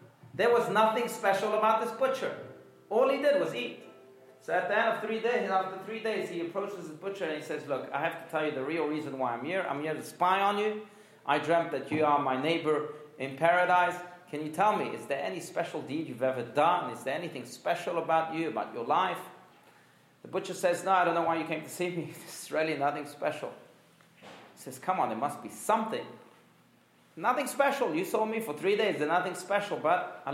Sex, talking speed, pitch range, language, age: male, 230 wpm, 145-190 Hz, English, 40-59